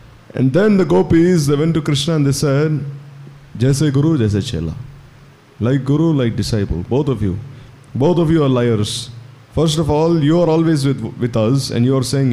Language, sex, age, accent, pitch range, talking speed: English, male, 20-39, Indian, 120-155 Hz, 195 wpm